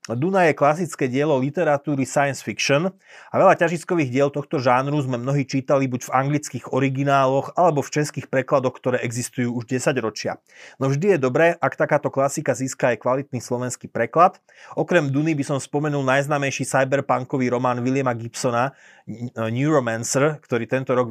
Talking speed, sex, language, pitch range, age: 155 wpm, male, Slovak, 125-150 Hz, 30-49